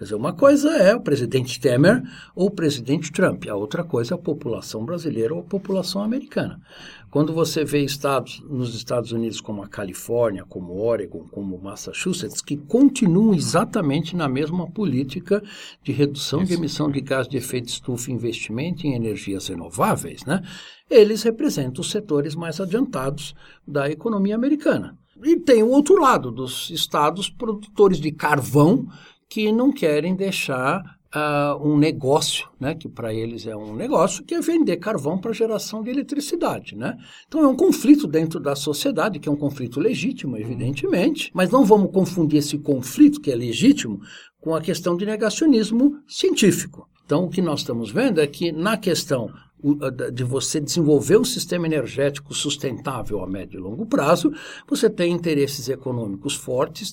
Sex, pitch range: male, 130-200 Hz